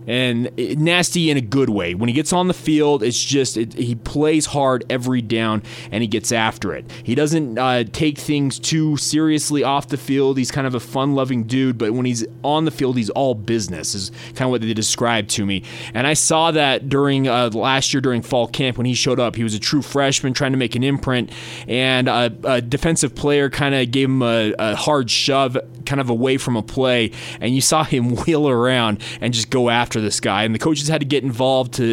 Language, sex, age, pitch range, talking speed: English, male, 20-39, 120-145 Hz, 230 wpm